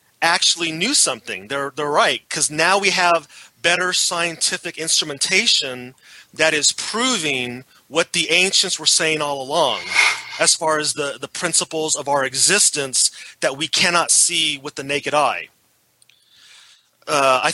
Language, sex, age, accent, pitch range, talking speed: English, male, 30-49, American, 140-170 Hz, 145 wpm